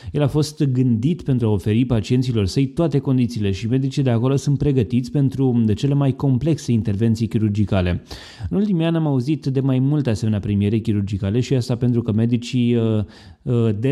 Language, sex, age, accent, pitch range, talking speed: Romanian, male, 20-39, native, 110-135 Hz, 175 wpm